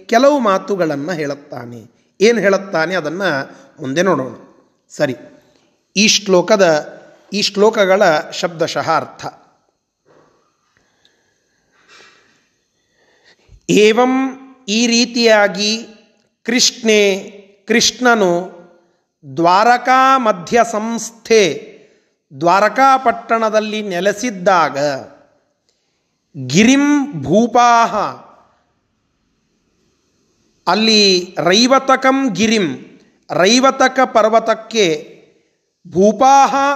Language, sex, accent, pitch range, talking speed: Kannada, male, native, 185-250 Hz, 45 wpm